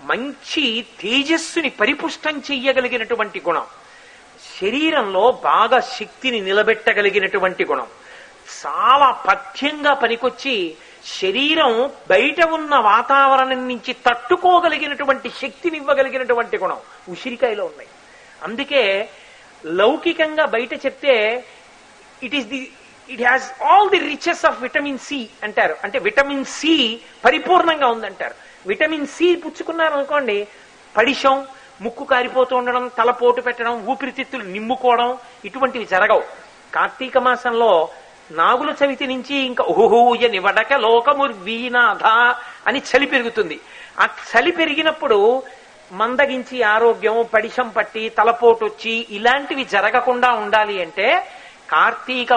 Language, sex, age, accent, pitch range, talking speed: Telugu, male, 40-59, native, 230-285 Hz, 95 wpm